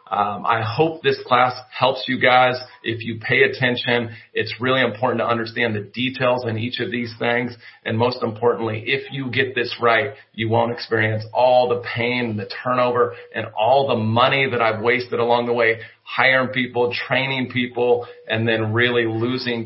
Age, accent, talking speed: 40-59, American, 175 wpm